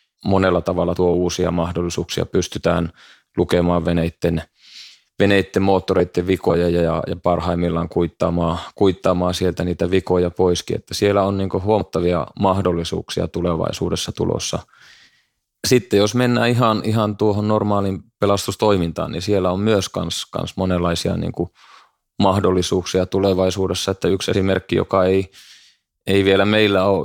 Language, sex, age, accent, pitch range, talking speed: Finnish, male, 20-39, native, 85-100 Hz, 125 wpm